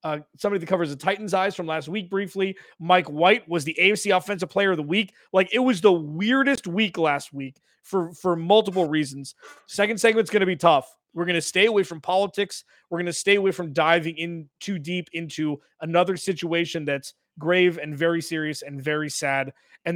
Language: English